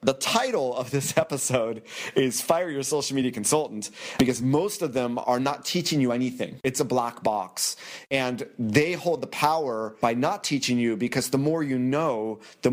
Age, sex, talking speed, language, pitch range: 30-49, male, 185 wpm, English, 125-160 Hz